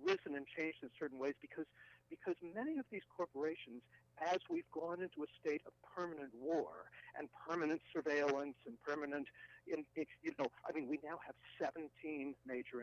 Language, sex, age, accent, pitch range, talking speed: English, male, 60-79, American, 125-195 Hz, 175 wpm